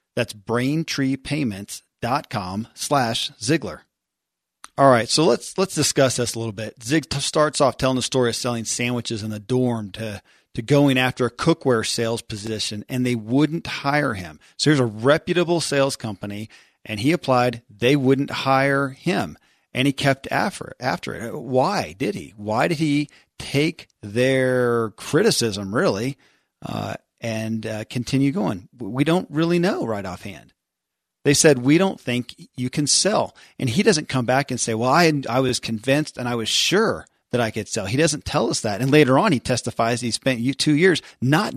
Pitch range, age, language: 110-140 Hz, 40-59, English